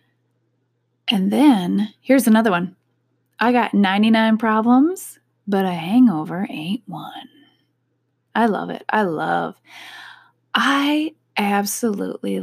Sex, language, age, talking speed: female, English, 20-39, 100 wpm